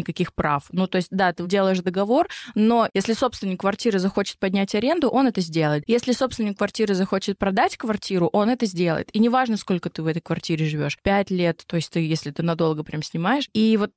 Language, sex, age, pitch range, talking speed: Russian, female, 20-39, 175-215 Hz, 205 wpm